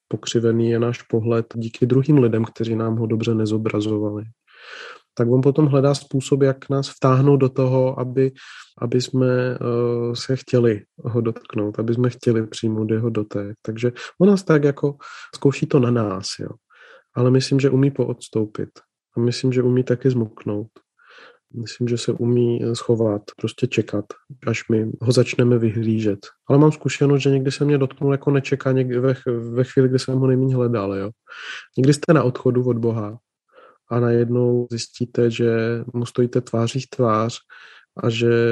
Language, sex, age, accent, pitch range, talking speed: Czech, male, 30-49, native, 115-130 Hz, 160 wpm